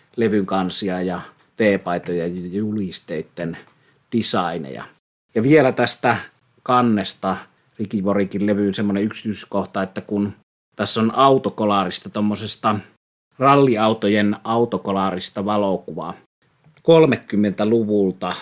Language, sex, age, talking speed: Finnish, male, 30-49, 80 wpm